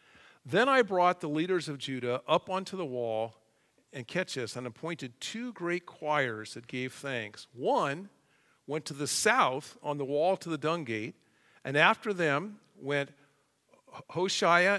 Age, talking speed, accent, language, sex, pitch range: 50-69, 155 wpm, American, English, male, 130-165 Hz